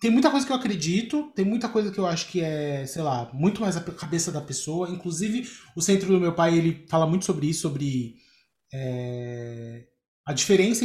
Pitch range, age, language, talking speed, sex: 140-185 Hz, 20-39, Portuguese, 200 wpm, male